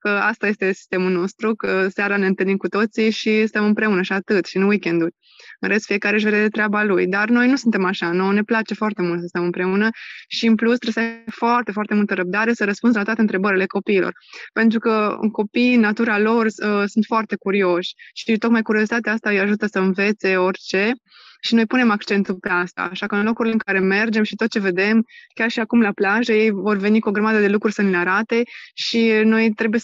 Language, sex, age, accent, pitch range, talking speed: Romanian, female, 20-39, native, 195-225 Hz, 235 wpm